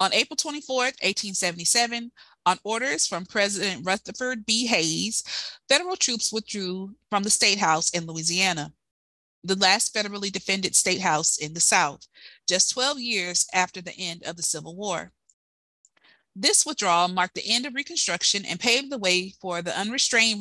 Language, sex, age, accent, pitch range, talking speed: English, female, 30-49, American, 180-230 Hz, 155 wpm